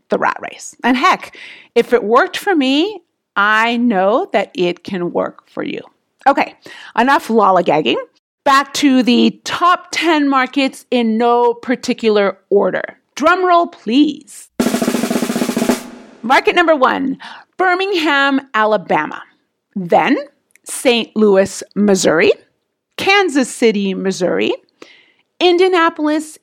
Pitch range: 205-295 Hz